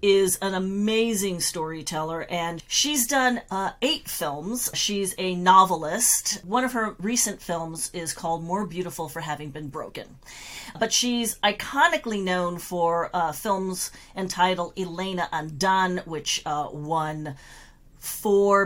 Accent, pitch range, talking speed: American, 165-205 Hz, 130 wpm